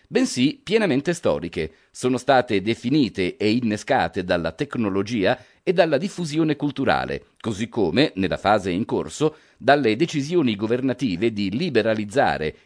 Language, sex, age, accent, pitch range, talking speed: Italian, male, 40-59, native, 105-165 Hz, 120 wpm